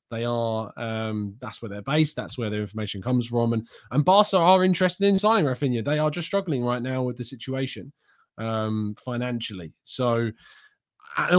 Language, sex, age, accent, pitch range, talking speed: English, male, 20-39, British, 115-145 Hz, 180 wpm